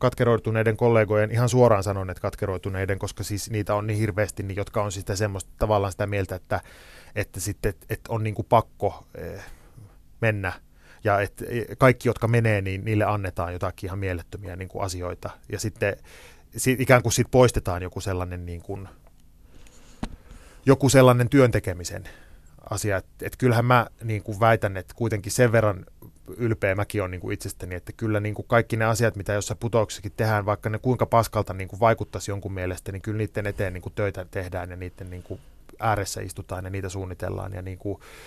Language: Finnish